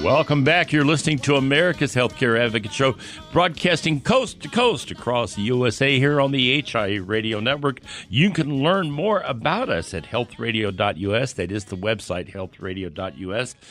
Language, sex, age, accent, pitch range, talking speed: English, male, 60-79, American, 115-150 Hz, 155 wpm